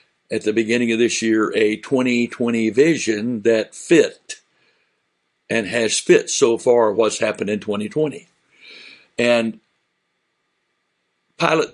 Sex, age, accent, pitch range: male, 60-79, American, 105-140 Hz